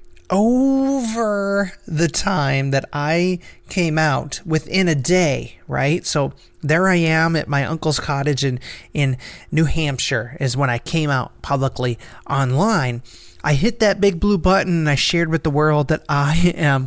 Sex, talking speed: male, 160 wpm